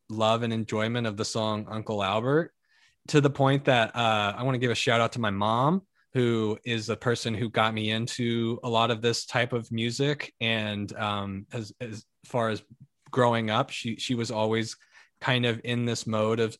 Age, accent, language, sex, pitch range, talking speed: 20-39, American, English, male, 110-145 Hz, 205 wpm